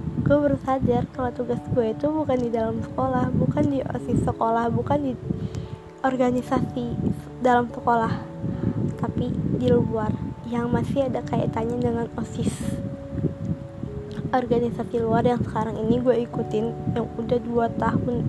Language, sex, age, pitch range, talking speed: Indonesian, female, 20-39, 225-245 Hz, 130 wpm